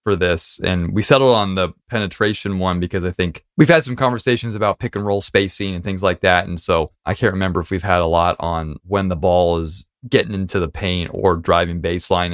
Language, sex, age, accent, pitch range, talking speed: English, male, 20-39, American, 90-105 Hz, 230 wpm